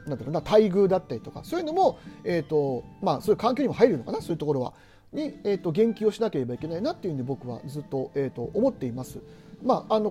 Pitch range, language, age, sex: 145-215 Hz, Japanese, 40-59, male